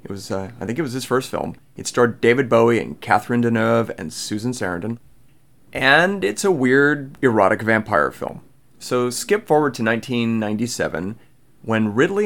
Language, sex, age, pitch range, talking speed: English, male, 30-49, 110-145 Hz, 165 wpm